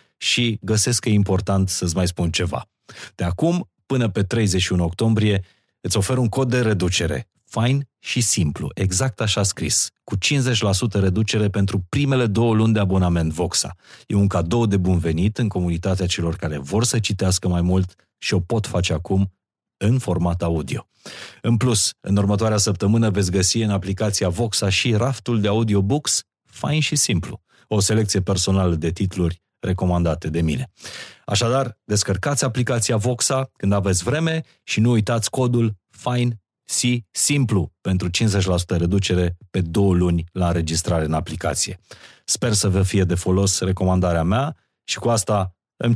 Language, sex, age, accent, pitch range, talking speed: Romanian, male, 30-49, native, 90-115 Hz, 155 wpm